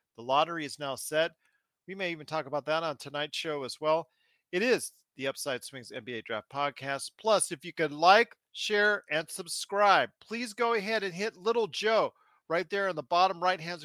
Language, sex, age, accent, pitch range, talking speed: English, male, 40-59, American, 155-210 Hz, 195 wpm